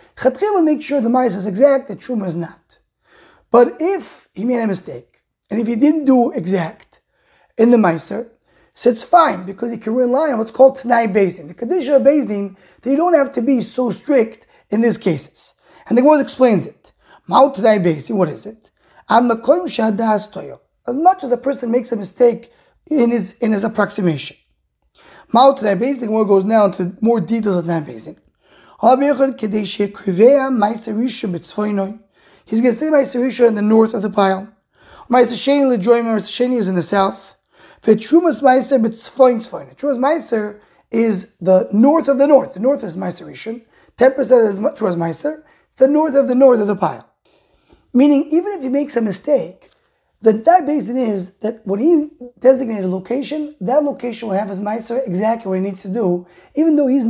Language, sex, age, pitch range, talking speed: English, male, 30-49, 205-270 Hz, 170 wpm